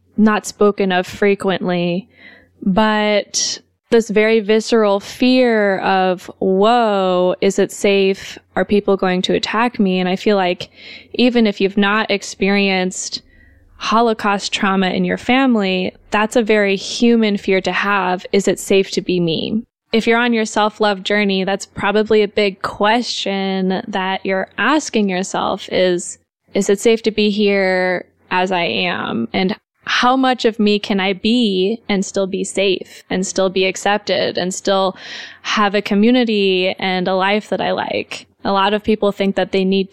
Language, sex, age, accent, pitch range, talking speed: English, female, 20-39, American, 190-215 Hz, 160 wpm